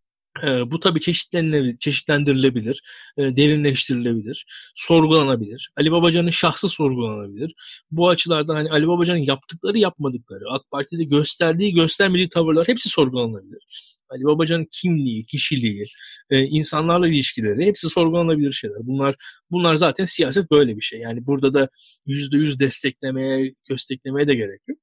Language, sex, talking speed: Turkish, male, 120 wpm